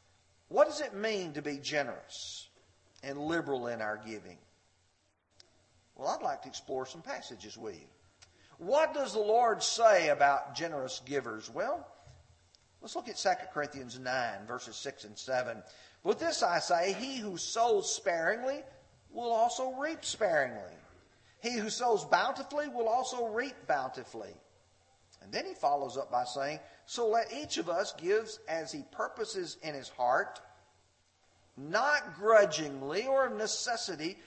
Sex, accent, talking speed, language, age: male, American, 145 wpm, English, 50-69